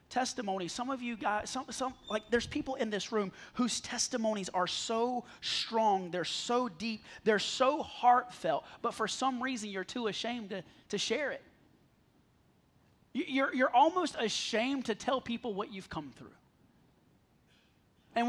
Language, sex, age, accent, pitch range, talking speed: English, male, 30-49, American, 205-255 Hz, 155 wpm